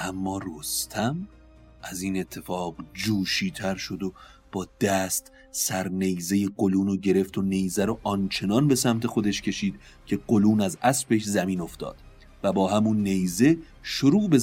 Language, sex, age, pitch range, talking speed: Persian, male, 30-49, 90-110 Hz, 145 wpm